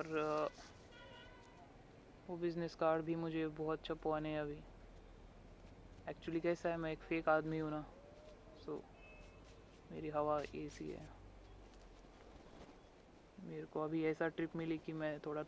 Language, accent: Marathi, native